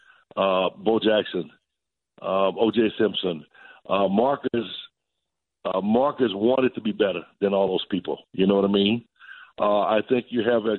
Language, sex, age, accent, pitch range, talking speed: English, male, 60-79, American, 100-115 Hz, 160 wpm